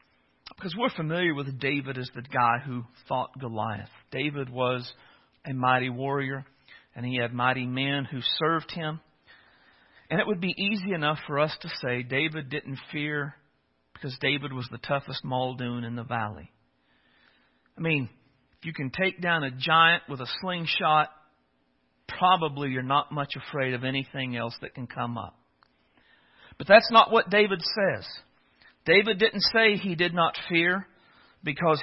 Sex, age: male, 50-69